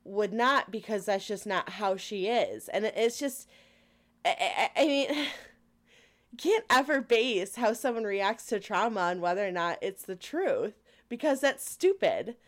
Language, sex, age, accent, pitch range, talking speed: English, female, 20-39, American, 190-275 Hz, 170 wpm